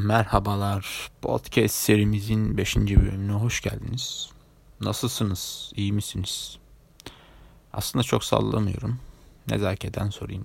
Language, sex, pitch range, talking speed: Turkish, male, 100-125 Hz, 85 wpm